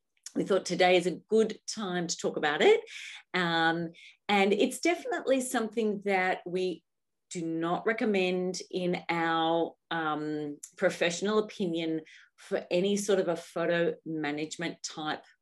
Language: English